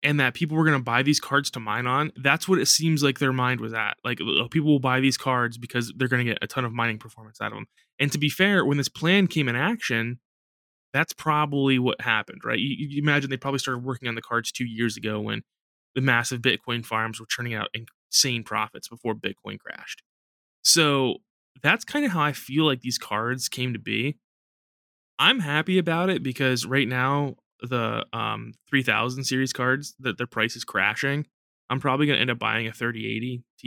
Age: 20-39